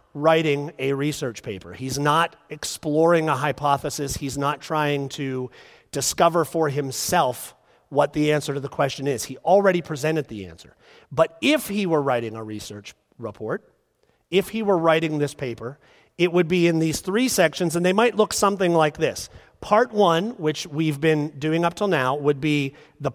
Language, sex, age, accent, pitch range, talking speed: English, male, 40-59, American, 140-180 Hz, 175 wpm